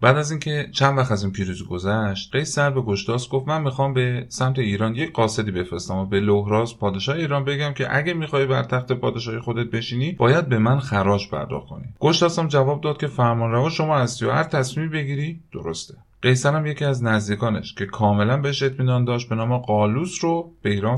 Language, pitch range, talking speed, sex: Persian, 105-140 Hz, 195 wpm, male